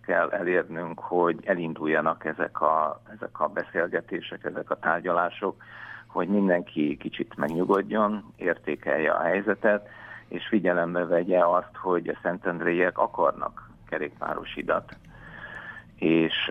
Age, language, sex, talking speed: 50-69, Hungarian, male, 100 wpm